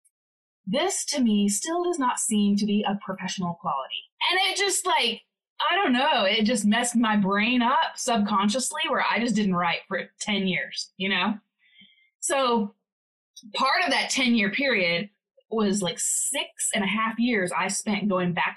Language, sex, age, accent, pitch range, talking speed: English, female, 20-39, American, 185-230 Hz, 175 wpm